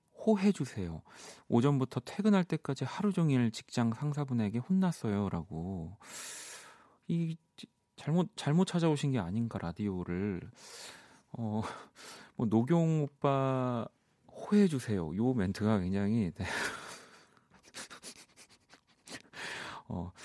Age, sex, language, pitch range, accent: 40-59, male, Korean, 95-150 Hz, native